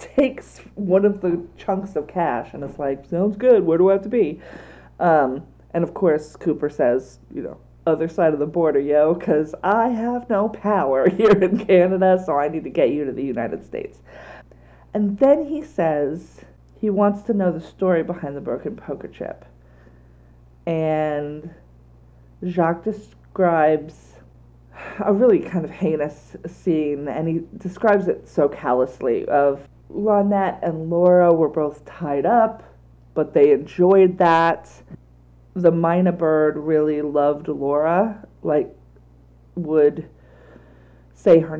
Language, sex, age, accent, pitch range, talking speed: English, female, 40-59, American, 135-180 Hz, 145 wpm